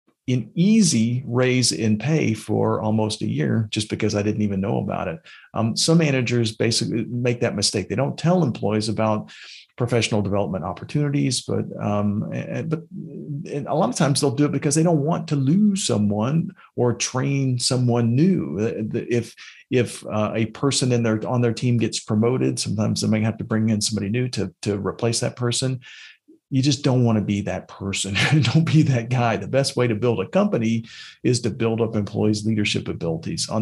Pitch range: 105-130 Hz